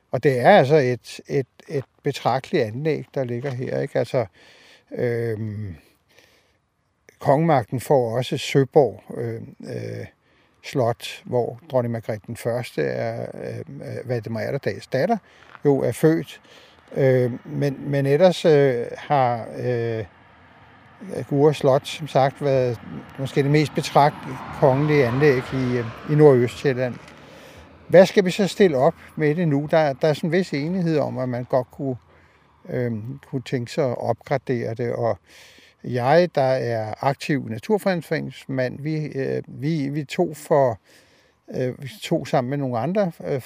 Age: 60-79